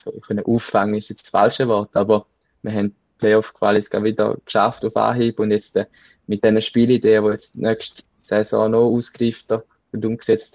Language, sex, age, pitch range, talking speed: German, male, 20-39, 105-115 Hz, 170 wpm